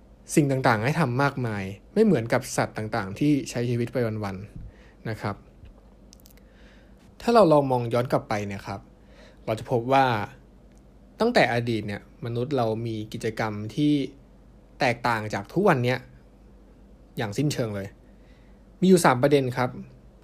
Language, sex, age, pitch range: Thai, male, 20-39, 105-140 Hz